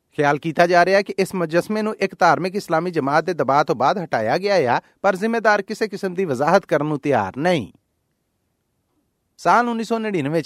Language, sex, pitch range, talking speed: Punjabi, male, 150-205 Hz, 180 wpm